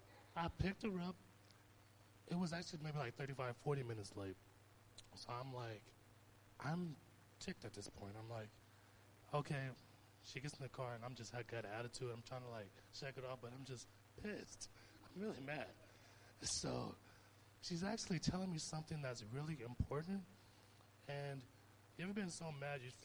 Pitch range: 105-155 Hz